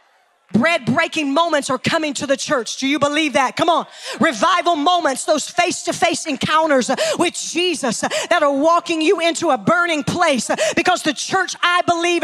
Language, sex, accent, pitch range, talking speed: English, female, American, 315-370 Hz, 175 wpm